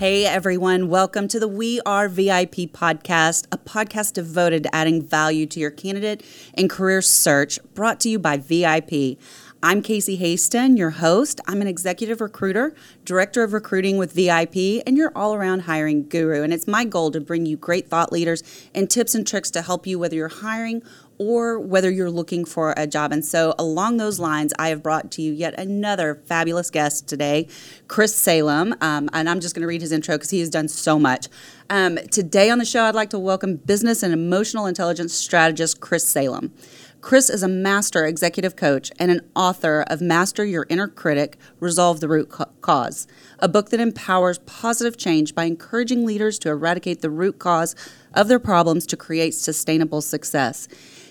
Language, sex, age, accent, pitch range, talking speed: English, female, 30-49, American, 160-200 Hz, 185 wpm